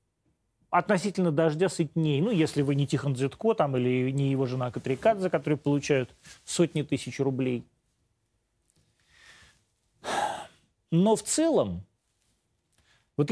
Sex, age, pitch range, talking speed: male, 30-49, 135-205 Hz, 110 wpm